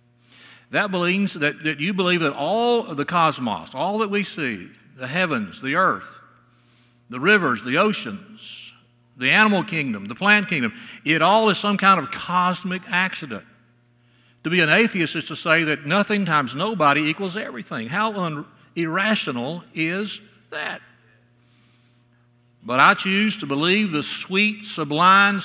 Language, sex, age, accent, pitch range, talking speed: English, male, 60-79, American, 120-190 Hz, 145 wpm